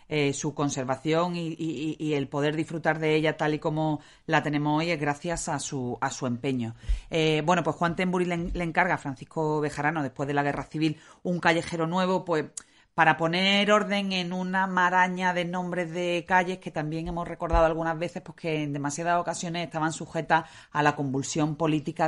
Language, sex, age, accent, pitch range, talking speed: Spanish, female, 40-59, Spanish, 140-165 Hz, 195 wpm